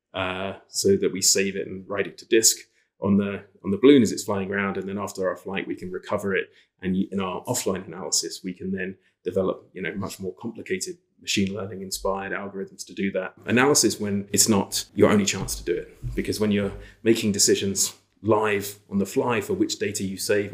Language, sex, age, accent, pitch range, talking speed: English, male, 30-49, British, 95-105 Hz, 215 wpm